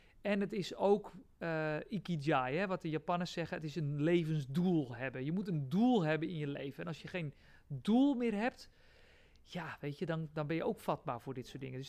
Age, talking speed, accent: 40-59, 225 wpm, Dutch